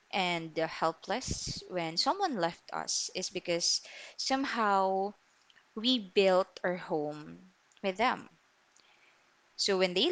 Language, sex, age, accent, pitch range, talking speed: English, female, 20-39, Filipino, 165-200 Hz, 105 wpm